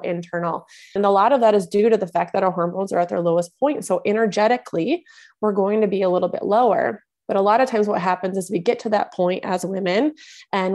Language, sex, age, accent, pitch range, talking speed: English, female, 20-39, American, 180-210 Hz, 250 wpm